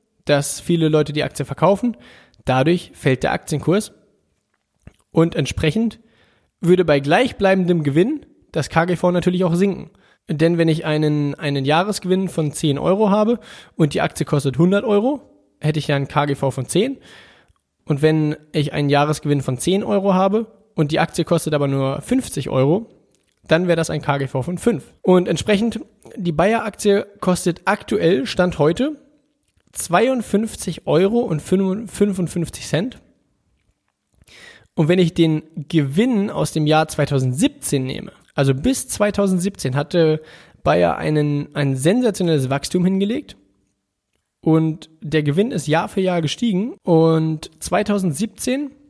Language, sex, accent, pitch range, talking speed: German, male, German, 145-200 Hz, 135 wpm